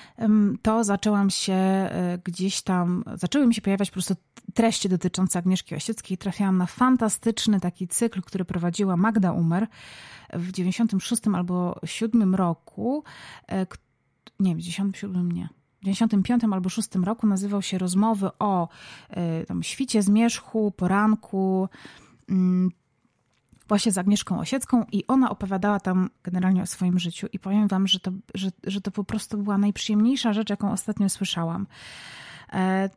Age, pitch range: 30-49, 185-220 Hz